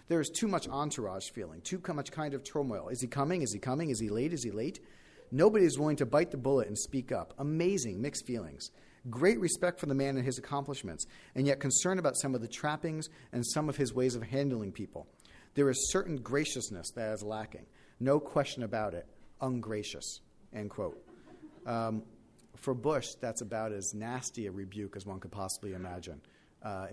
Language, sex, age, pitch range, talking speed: English, male, 40-59, 110-150 Hz, 200 wpm